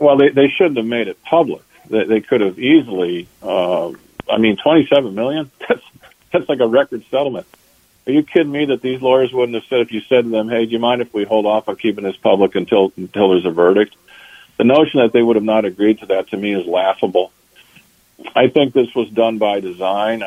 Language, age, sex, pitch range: English, 50-69, male, 95-115 Hz